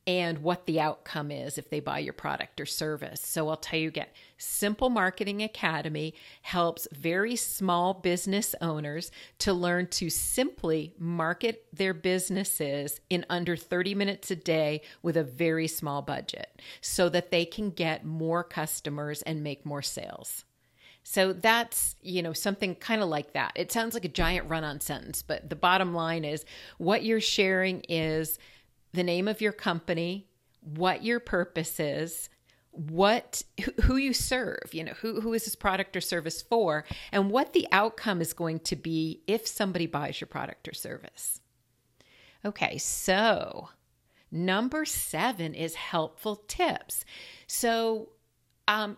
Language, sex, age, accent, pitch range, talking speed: English, female, 50-69, American, 160-205 Hz, 155 wpm